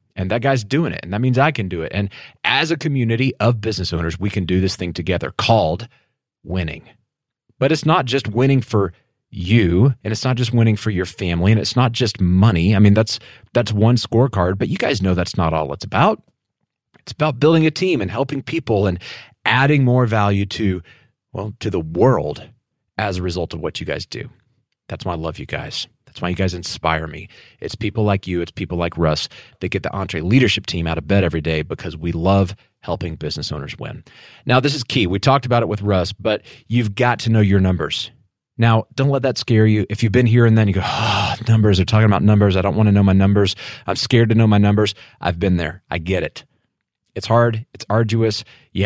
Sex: male